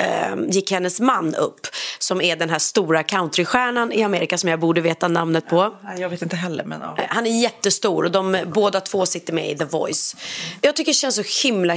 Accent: native